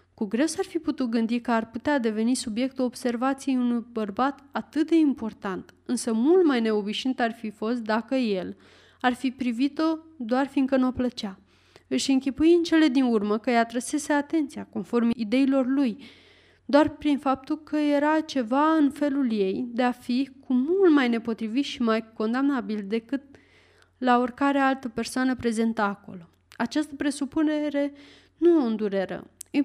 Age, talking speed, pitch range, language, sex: 20-39, 160 wpm, 225-280 Hz, Romanian, female